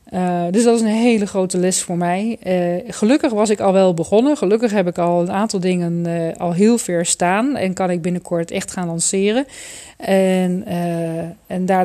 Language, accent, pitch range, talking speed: Dutch, Dutch, 175-205 Hz, 195 wpm